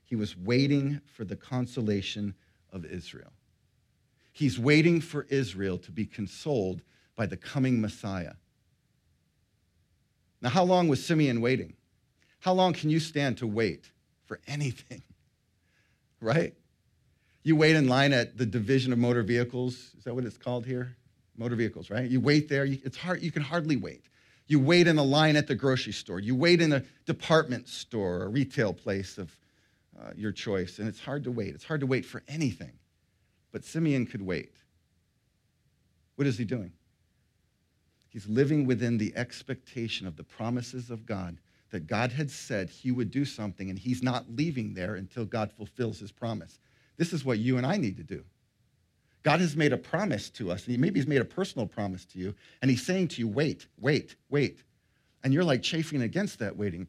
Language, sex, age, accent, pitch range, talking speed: English, male, 50-69, American, 105-140 Hz, 180 wpm